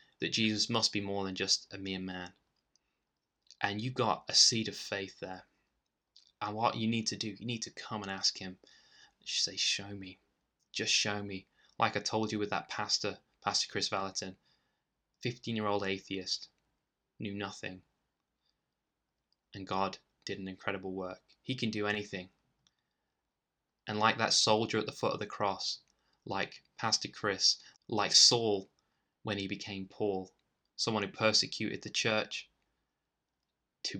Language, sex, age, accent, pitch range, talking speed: English, male, 20-39, British, 95-105 Hz, 155 wpm